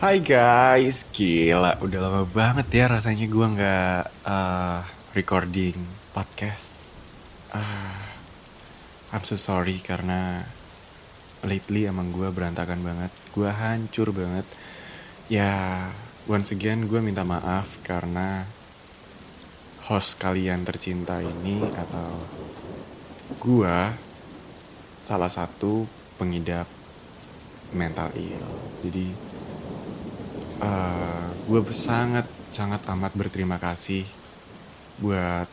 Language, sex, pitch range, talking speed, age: Indonesian, male, 90-105 Hz, 90 wpm, 20-39